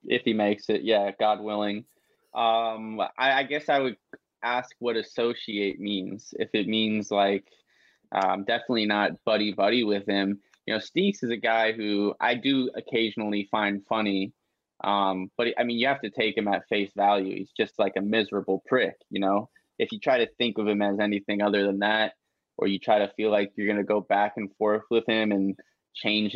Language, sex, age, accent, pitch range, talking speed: English, male, 20-39, American, 100-110 Hz, 200 wpm